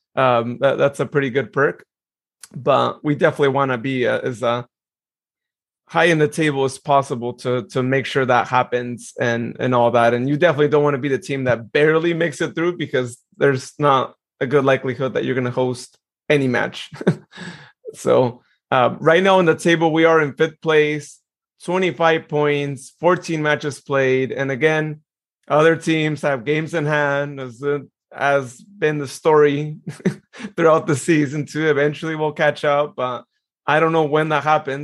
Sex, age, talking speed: male, 30-49, 185 wpm